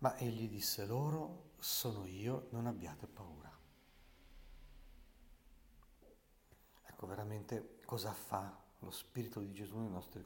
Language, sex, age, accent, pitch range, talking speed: Italian, male, 50-69, native, 95-120 Hz, 110 wpm